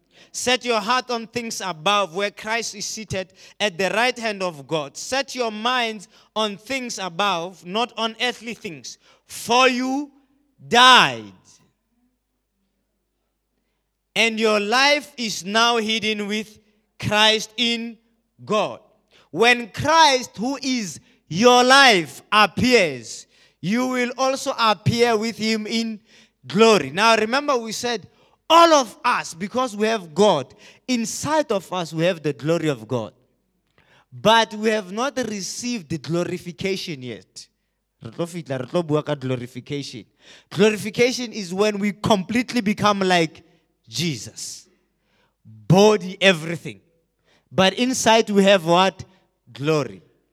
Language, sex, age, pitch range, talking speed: English, male, 30-49, 170-235 Hz, 115 wpm